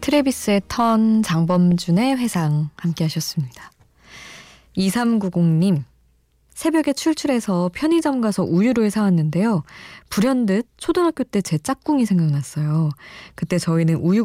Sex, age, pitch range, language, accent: female, 20-39, 155-215 Hz, Korean, native